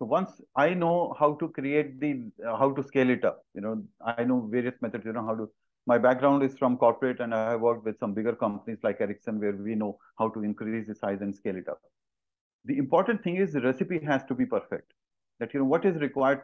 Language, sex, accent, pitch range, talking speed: English, male, Indian, 125-175 Hz, 245 wpm